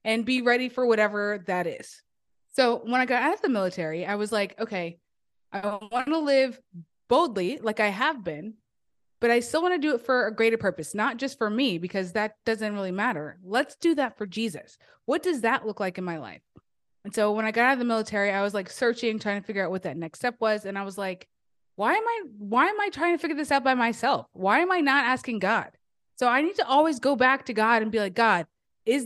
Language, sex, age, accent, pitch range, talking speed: English, female, 20-39, American, 195-255 Hz, 250 wpm